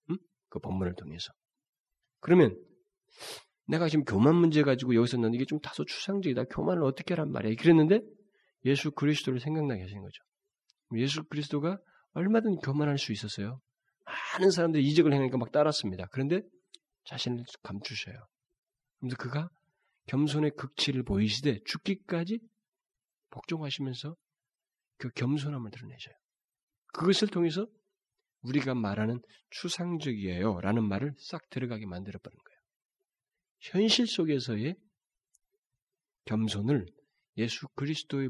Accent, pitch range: native, 125-185 Hz